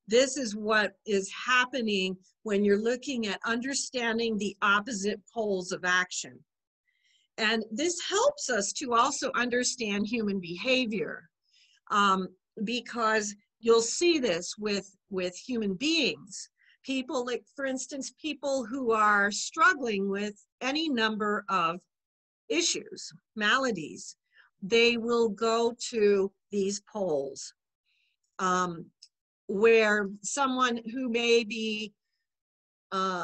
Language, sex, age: English, female, 50-69